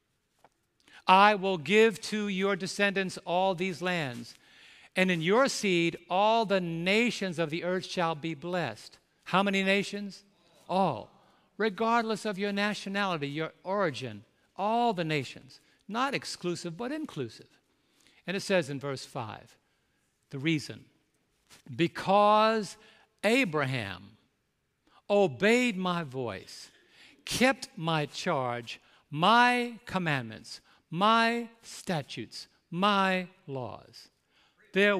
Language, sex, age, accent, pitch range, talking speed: English, male, 60-79, American, 150-210 Hz, 105 wpm